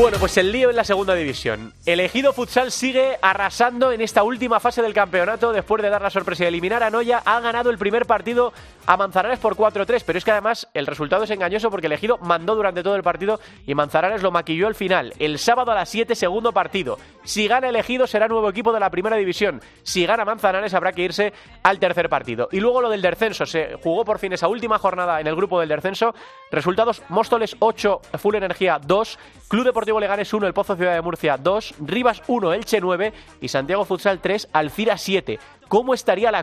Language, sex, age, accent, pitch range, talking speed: Spanish, male, 30-49, Spanish, 175-220 Hz, 210 wpm